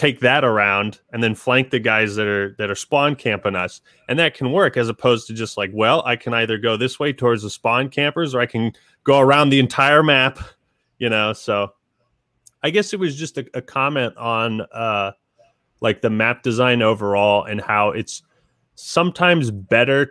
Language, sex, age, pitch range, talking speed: English, male, 30-49, 110-135 Hz, 195 wpm